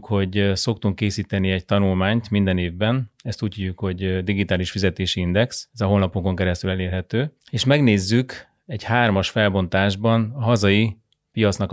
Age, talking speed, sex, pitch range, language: 30-49, 140 wpm, male, 95-110 Hz, Hungarian